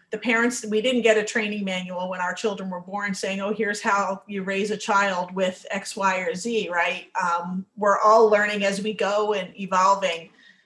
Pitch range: 185-215 Hz